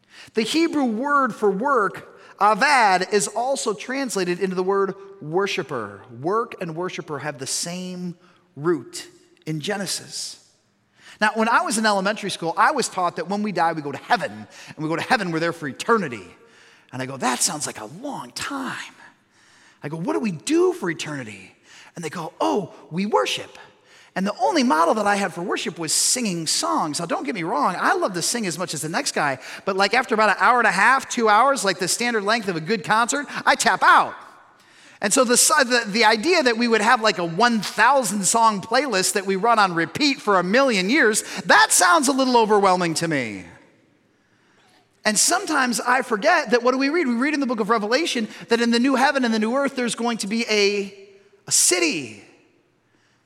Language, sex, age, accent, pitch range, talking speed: English, male, 30-49, American, 185-250 Hz, 205 wpm